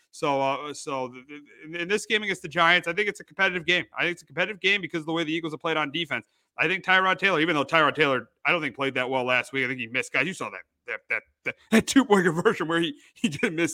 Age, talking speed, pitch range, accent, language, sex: 30-49, 295 wpm, 130-170 Hz, American, English, male